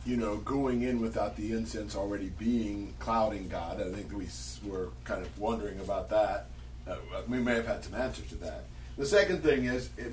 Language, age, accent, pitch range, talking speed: English, 40-59, American, 100-145 Hz, 200 wpm